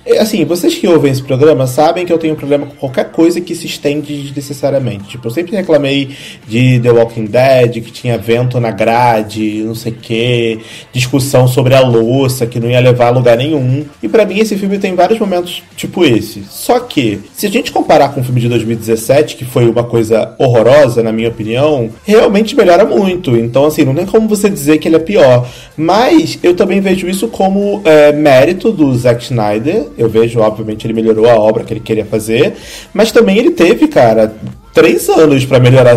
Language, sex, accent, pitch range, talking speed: Portuguese, male, Brazilian, 115-165 Hz, 200 wpm